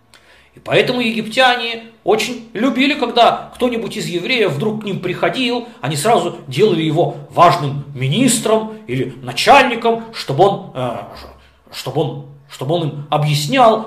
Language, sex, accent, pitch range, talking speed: Russian, male, native, 145-230 Hz, 115 wpm